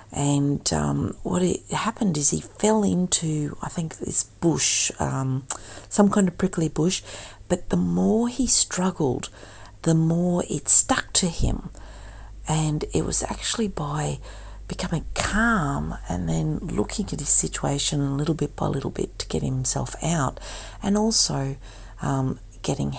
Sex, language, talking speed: female, English, 150 wpm